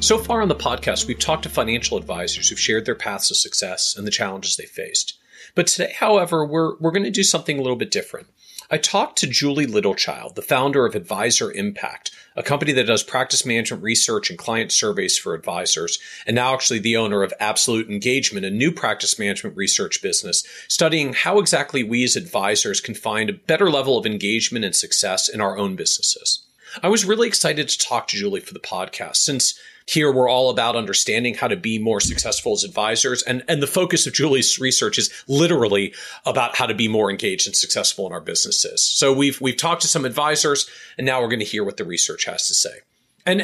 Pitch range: 125-200 Hz